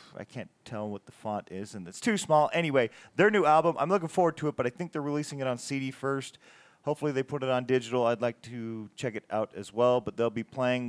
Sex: male